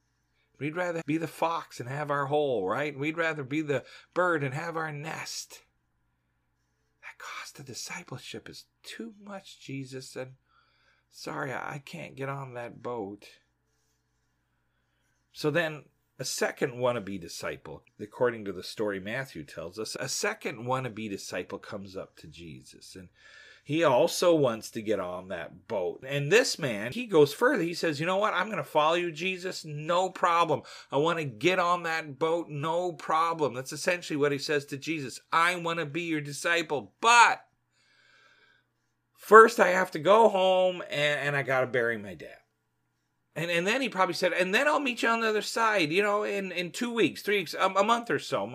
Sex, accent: male, American